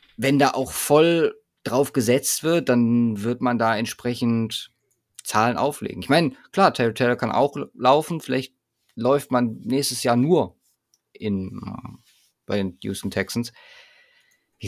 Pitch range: 115-140 Hz